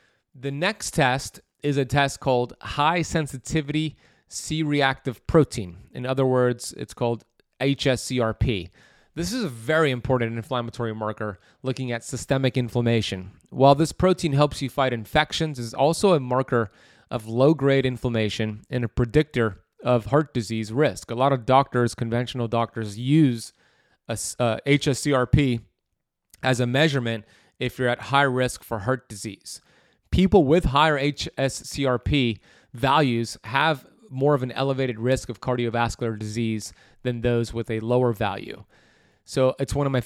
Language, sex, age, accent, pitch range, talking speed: English, male, 30-49, American, 115-140 Hz, 140 wpm